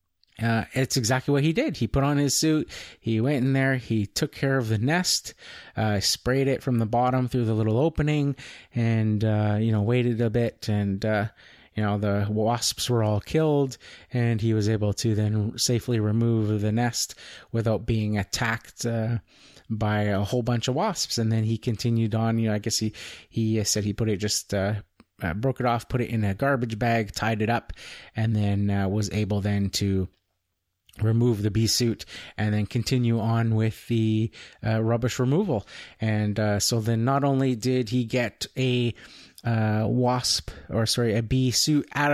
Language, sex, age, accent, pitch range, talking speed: English, male, 30-49, American, 105-130 Hz, 190 wpm